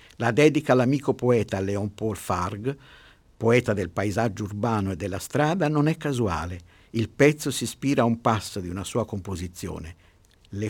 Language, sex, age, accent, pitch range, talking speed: Italian, male, 50-69, native, 100-135 Hz, 165 wpm